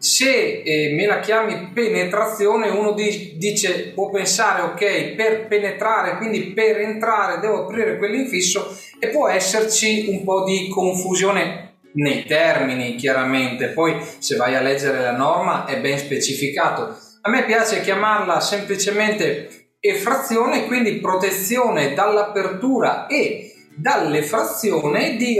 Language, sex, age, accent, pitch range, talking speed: Italian, male, 30-49, native, 160-215 Hz, 120 wpm